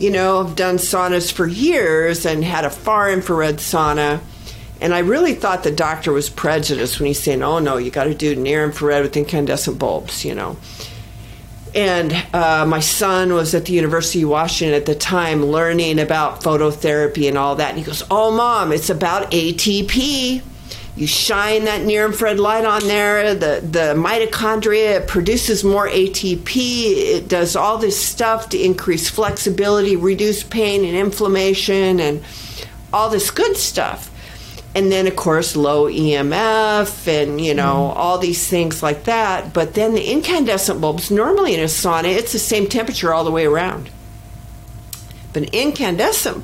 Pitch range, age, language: 150-205 Hz, 50-69, English